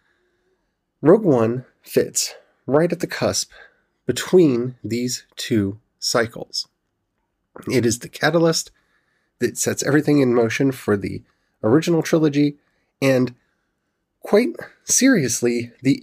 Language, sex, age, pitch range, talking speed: English, male, 30-49, 115-160 Hz, 105 wpm